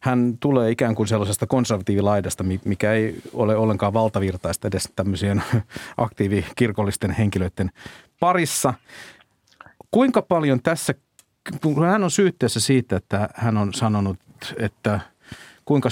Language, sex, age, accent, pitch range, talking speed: Finnish, male, 50-69, native, 105-140 Hz, 110 wpm